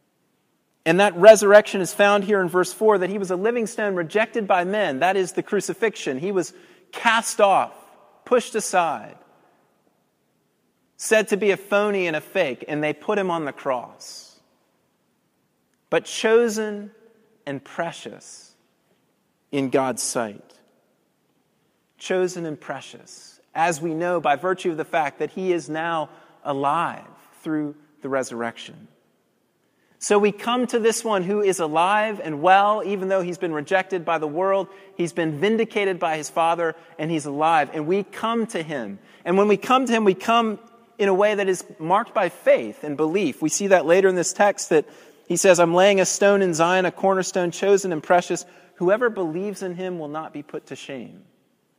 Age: 30-49